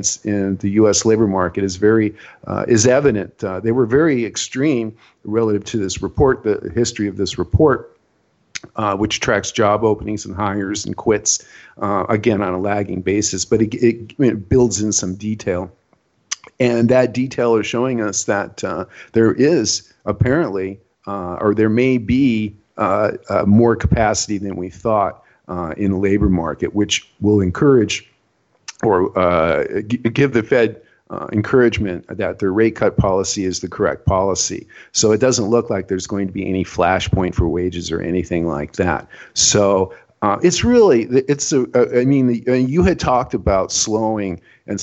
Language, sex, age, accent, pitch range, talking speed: English, male, 50-69, American, 95-115 Hz, 175 wpm